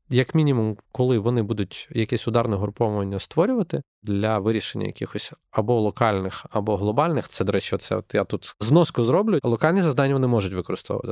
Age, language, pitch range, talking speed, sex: 20-39, Ukrainian, 105-125 Hz, 160 wpm, male